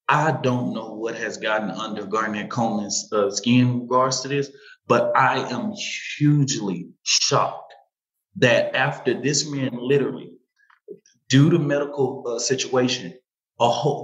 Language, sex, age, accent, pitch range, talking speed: English, male, 30-49, American, 125-165 Hz, 135 wpm